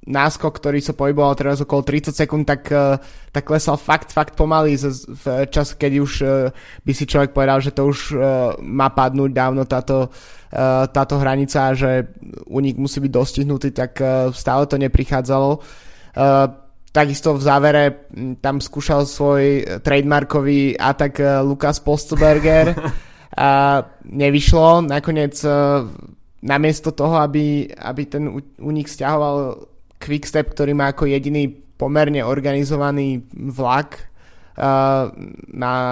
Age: 20-39